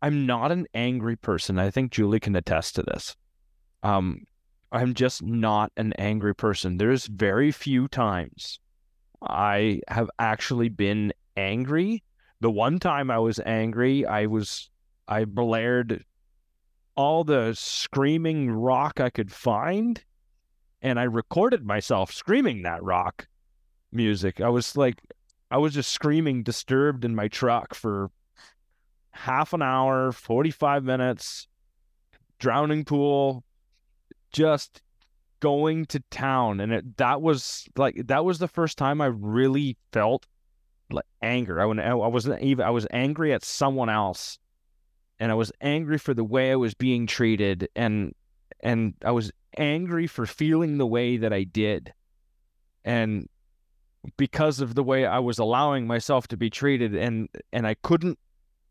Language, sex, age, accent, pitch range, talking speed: English, male, 30-49, American, 100-135 Hz, 145 wpm